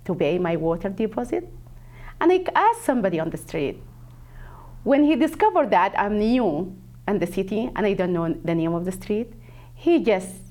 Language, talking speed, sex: English, 185 wpm, female